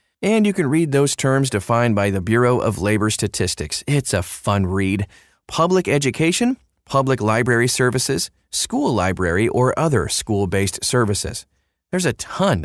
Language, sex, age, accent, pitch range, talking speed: English, male, 30-49, American, 100-135 Hz, 145 wpm